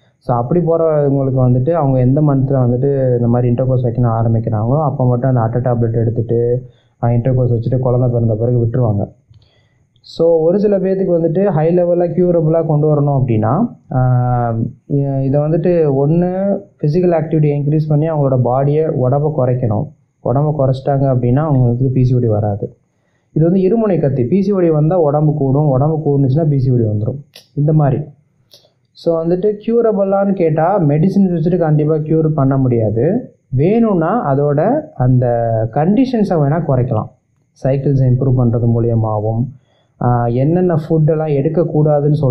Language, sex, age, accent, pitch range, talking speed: Tamil, male, 30-49, native, 125-155 Hz, 130 wpm